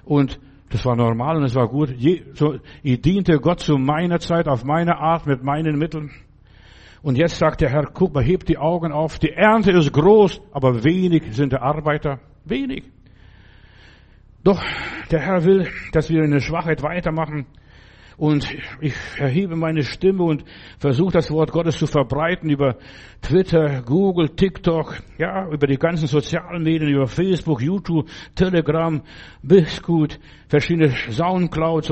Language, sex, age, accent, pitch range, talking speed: German, male, 60-79, German, 140-175 Hz, 150 wpm